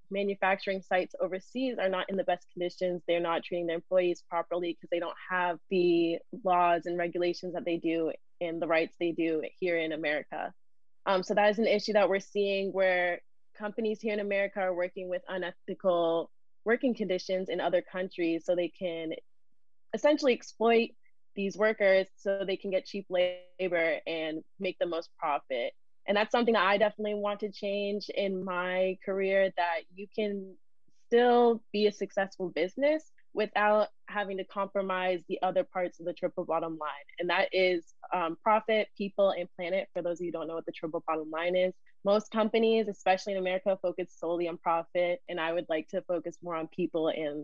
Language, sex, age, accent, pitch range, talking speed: English, female, 20-39, American, 175-200 Hz, 185 wpm